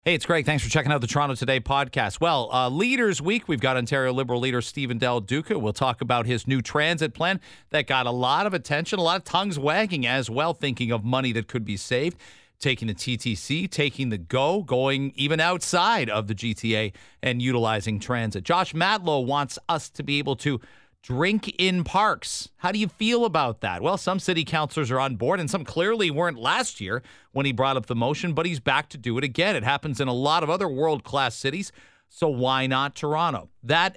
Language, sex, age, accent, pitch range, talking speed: English, male, 40-59, American, 120-155 Hz, 215 wpm